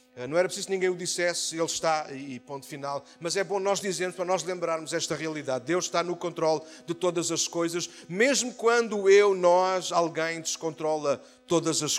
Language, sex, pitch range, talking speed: Portuguese, male, 185-250 Hz, 190 wpm